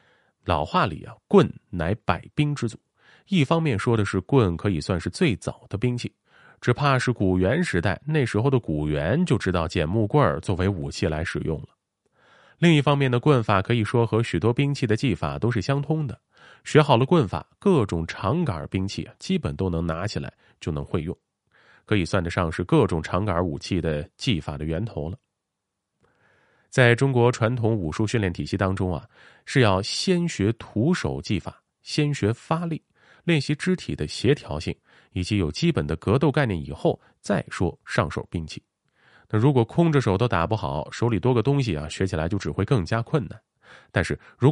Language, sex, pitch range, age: Chinese, male, 90-140 Hz, 30-49